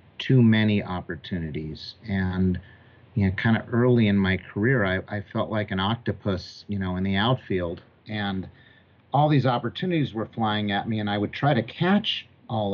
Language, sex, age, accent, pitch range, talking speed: English, male, 50-69, American, 105-130 Hz, 180 wpm